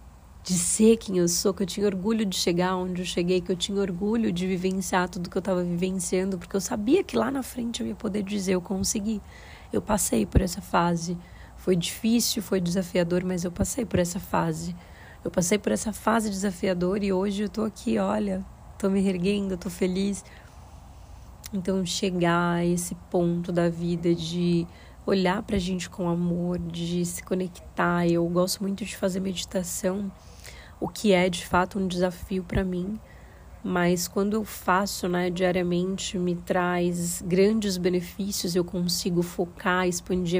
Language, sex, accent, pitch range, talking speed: Portuguese, female, Brazilian, 180-200 Hz, 170 wpm